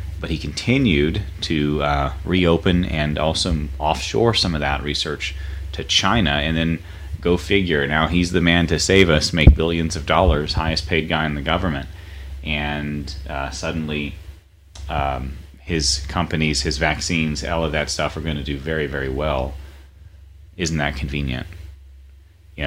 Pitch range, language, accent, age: 70-85 Hz, English, American, 30-49